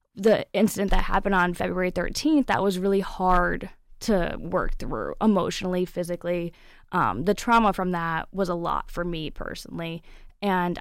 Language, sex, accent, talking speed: English, female, American, 155 wpm